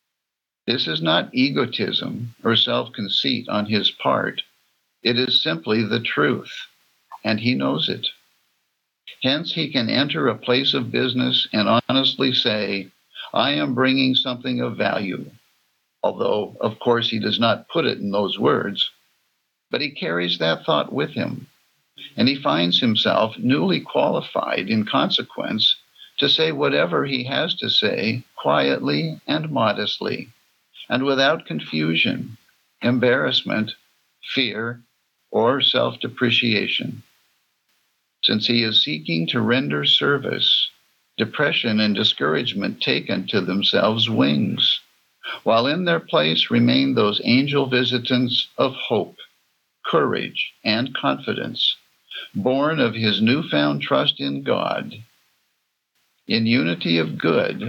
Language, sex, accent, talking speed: English, male, American, 120 wpm